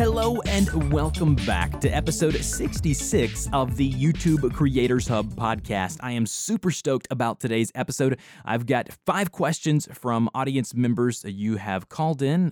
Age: 20-39